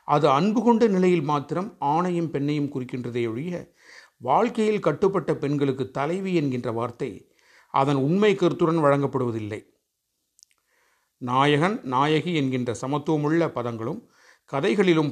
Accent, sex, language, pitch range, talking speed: native, male, Tamil, 135-185 Hz, 100 wpm